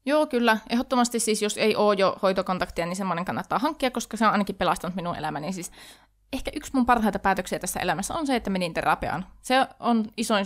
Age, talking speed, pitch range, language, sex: 20-39, 205 wpm, 185-245 Hz, Finnish, female